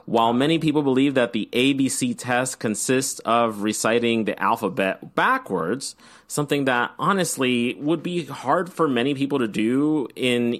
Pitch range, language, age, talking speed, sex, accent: 105-135 Hz, English, 30-49, 145 wpm, male, American